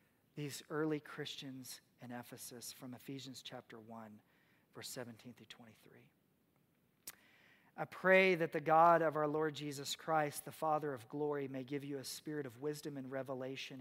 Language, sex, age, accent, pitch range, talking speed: English, male, 40-59, American, 135-170 Hz, 155 wpm